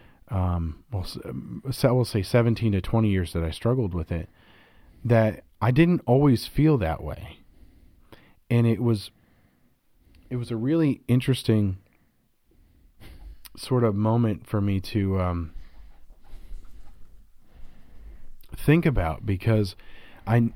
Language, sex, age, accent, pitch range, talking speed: English, male, 40-59, American, 90-120 Hz, 115 wpm